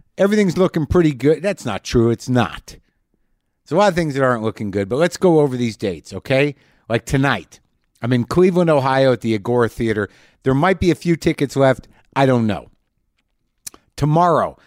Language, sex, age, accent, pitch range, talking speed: English, male, 50-69, American, 120-160 Hz, 190 wpm